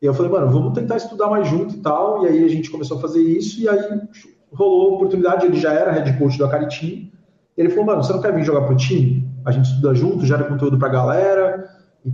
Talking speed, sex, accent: 245 wpm, male, Brazilian